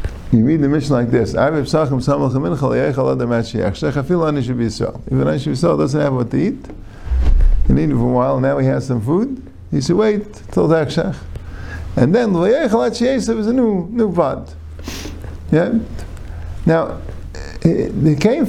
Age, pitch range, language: 50-69, 100-130 Hz, English